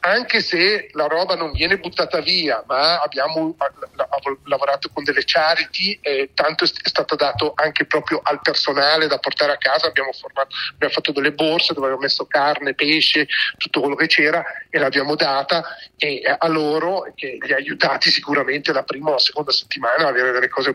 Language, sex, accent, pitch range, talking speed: Italian, male, native, 140-165 Hz, 180 wpm